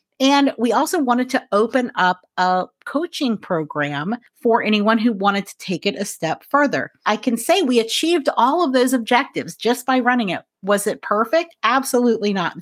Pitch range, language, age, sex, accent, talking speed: 195-265 Hz, English, 40-59, female, American, 185 wpm